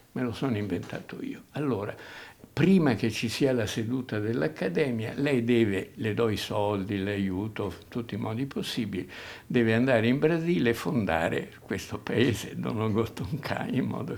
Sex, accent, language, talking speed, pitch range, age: male, native, Italian, 155 wpm, 100-120 Hz, 60-79